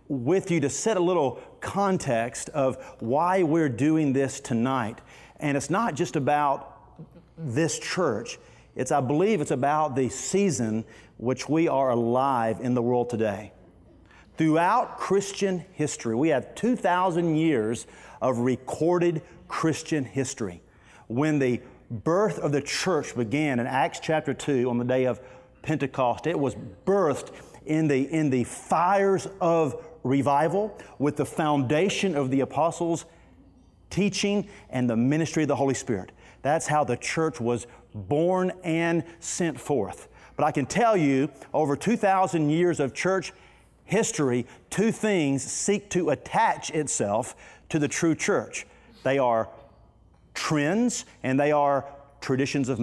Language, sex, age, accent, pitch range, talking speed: English, male, 40-59, American, 125-165 Hz, 140 wpm